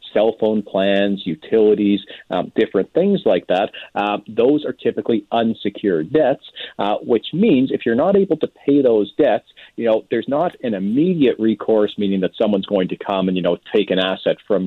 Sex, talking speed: male, 190 wpm